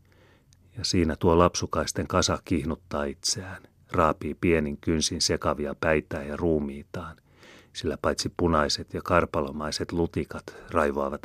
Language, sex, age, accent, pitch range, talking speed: Finnish, male, 30-49, native, 75-90 Hz, 110 wpm